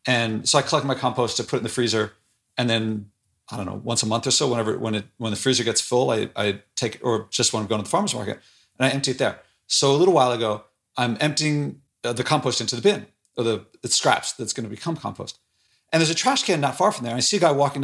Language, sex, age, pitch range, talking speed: English, male, 40-59, 115-155 Hz, 280 wpm